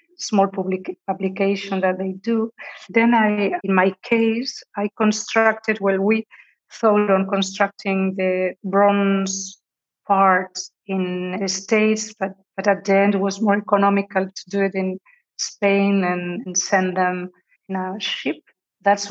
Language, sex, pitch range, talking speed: English, female, 190-210 Hz, 145 wpm